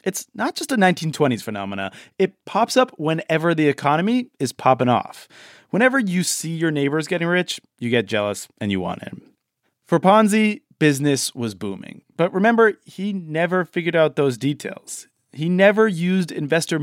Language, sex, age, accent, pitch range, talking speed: English, male, 30-49, American, 135-185 Hz, 165 wpm